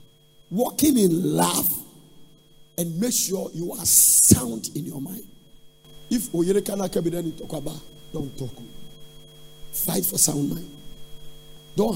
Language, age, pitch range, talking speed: English, 50-69, 150-185 Hz, 115 wpm